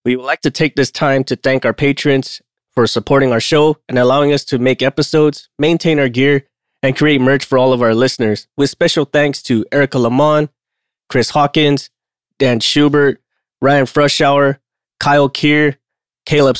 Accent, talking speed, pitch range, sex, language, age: American, 170 wpm, 130-150 Hz, male, English, 20-39